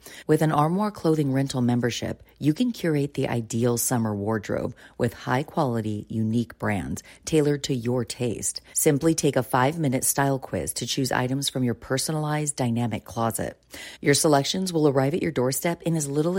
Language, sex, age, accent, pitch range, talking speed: English, female, 40-59, American, 120-155 Hz, 165 wpm